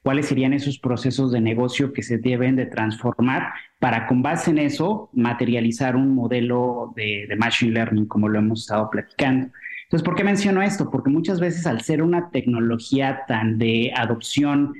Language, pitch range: Spanish, 115-135 Hz